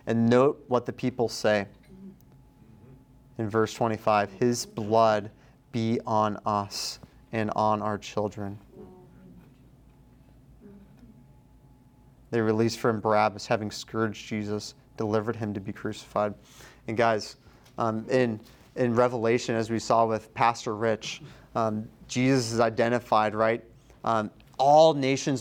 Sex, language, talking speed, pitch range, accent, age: male, English, 120 wpm, 110-130 Hz, American, 30-49